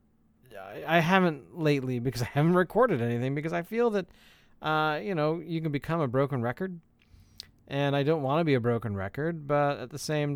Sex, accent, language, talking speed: male, American, English, 195 wpm